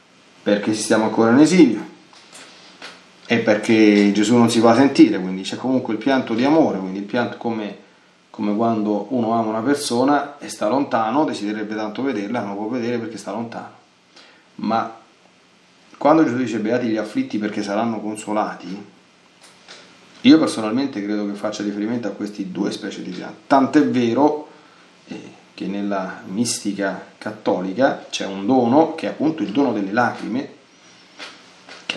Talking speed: 150 wpm